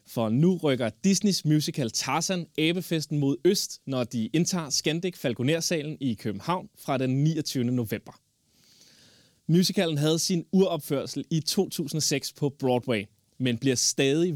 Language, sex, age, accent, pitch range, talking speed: Danish, male, 20-39, native, 125-160 Hz, 130 wpm